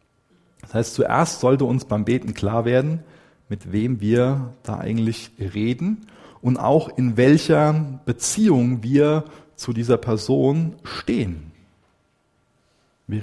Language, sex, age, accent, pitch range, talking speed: German, male, 40-59, German, 100-130 Hz, 120 wpm